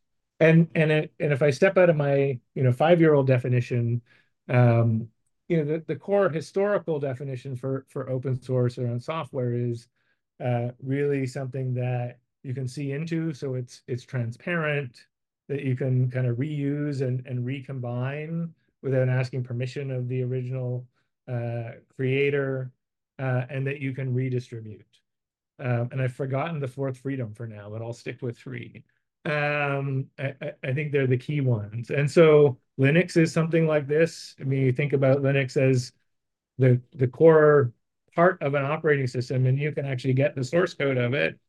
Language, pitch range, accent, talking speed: English, 125-150 Hz, American, 170 wpm